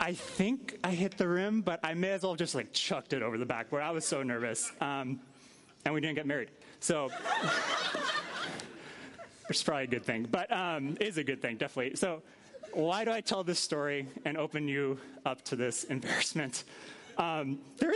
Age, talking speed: 20-39, 200 wpm